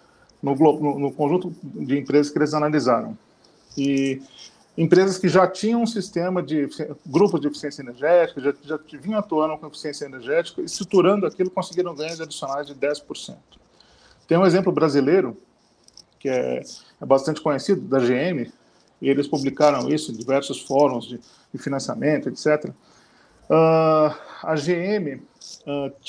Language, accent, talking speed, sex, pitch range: Portuguese, Brazilian, 140 wpm, male, 140-185 Hz